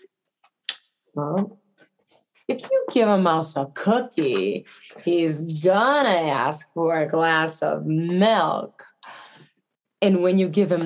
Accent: American